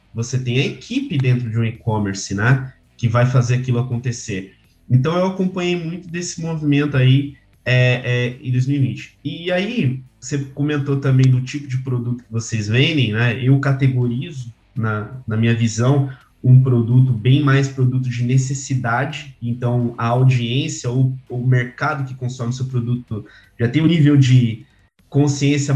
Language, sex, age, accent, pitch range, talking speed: Portuguese, male, 20-39, Brazilian, 120-150 Hz, 155 wpm